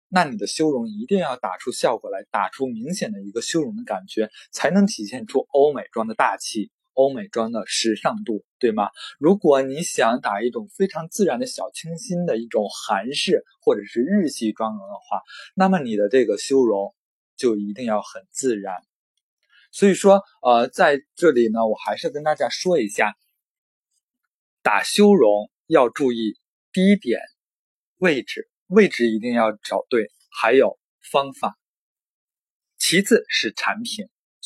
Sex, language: male, Chinese